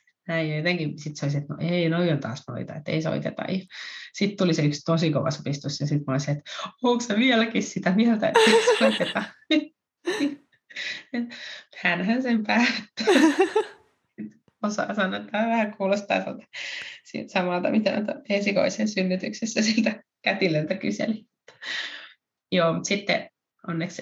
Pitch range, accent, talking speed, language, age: 160-225 Hz, native, 145 wpm, Finnish, 20-39